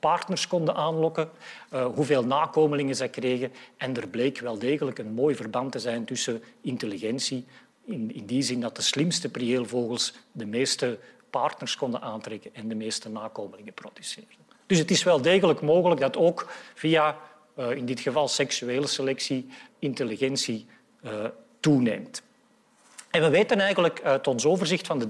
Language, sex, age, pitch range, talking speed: Dutch, male, 40-59, 130-175 Hz, 145 wpm